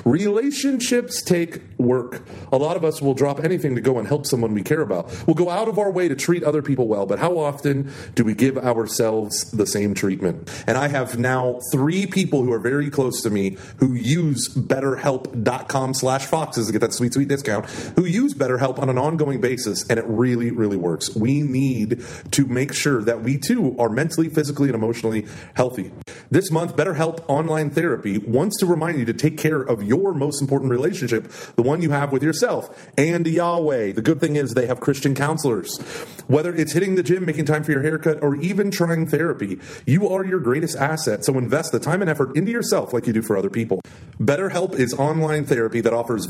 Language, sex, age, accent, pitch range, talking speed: English, male, 30-49, American, 125-165 Hz, 210 wpm